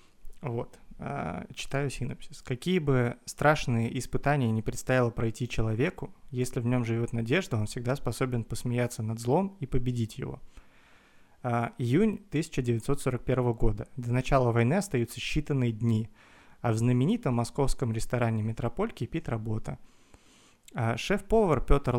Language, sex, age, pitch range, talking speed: Russian, male, 30-49, 120-140 Hz, 125 wpm